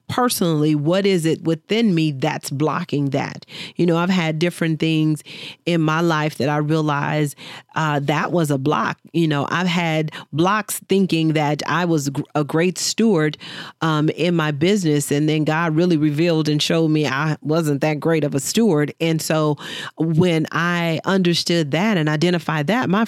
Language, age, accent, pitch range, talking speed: English, 40-59, American, 155-195 Hz, 175 wpm